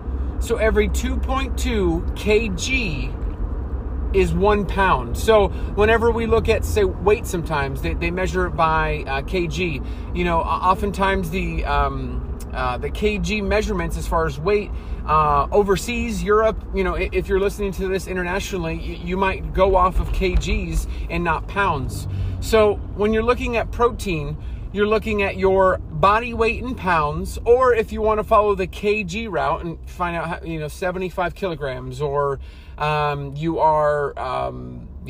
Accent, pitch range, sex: American, 135-210 Hz, male